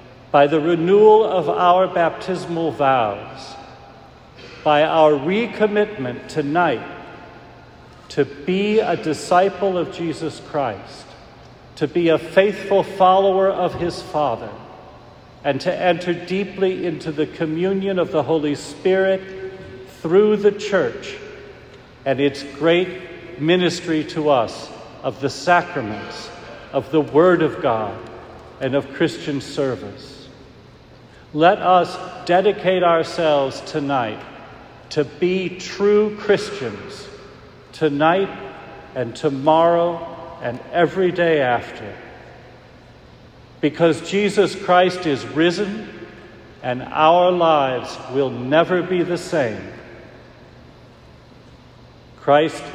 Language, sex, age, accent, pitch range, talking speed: English, male, 50-69, American, 135-180 Hz, 100 wpm